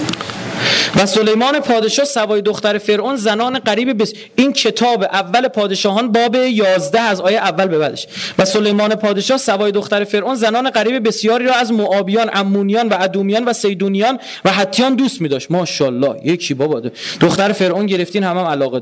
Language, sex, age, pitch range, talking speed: Persian, male, 30-49, 185-245 Hz, 155 wpm